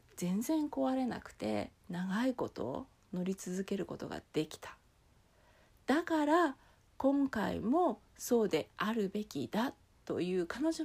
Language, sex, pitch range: Japanese, female, 175-275 Hz